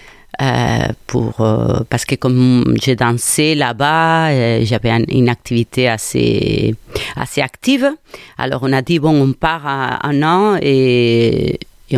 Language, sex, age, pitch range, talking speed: French, female, 40-59, 120-155 Hz, 145 wpm